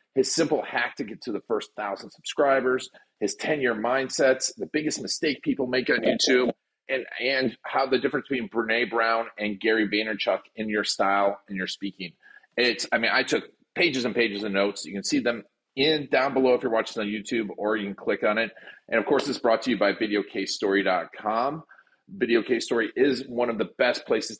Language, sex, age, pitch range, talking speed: English, male, 40-59, 100-125 Hz, 200 wpm